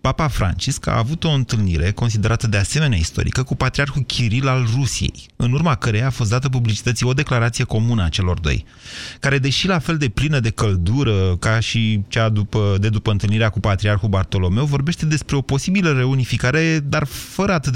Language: Romanian